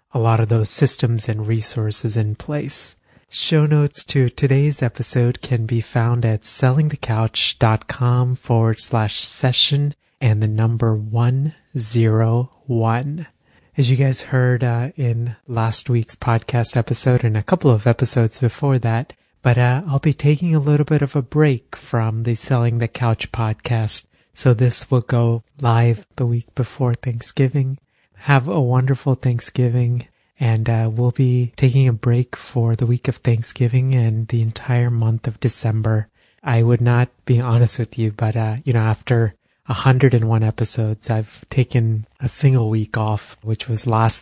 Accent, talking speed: American, 160 wpm